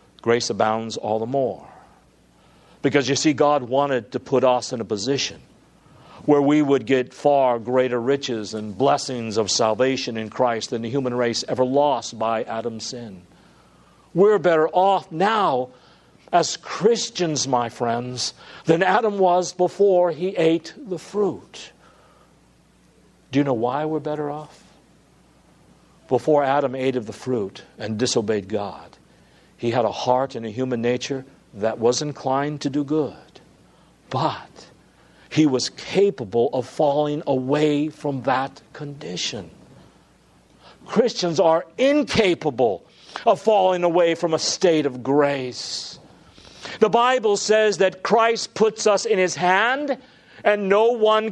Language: English